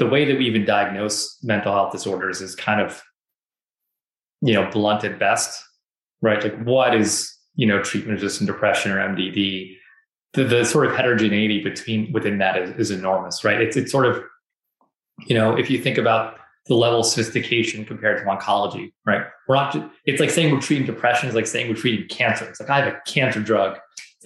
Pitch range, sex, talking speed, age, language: 105-130 Hz, male, 195 wpm, 20-39, English